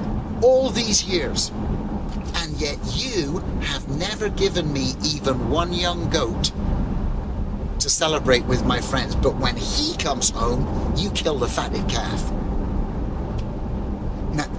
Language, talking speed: English, 125 wpm